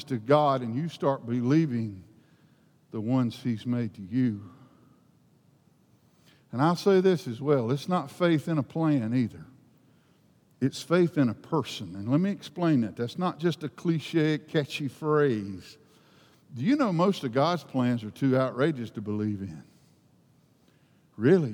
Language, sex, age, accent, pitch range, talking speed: English, male, 50-69, American, 130-170 Hz, 155 wpm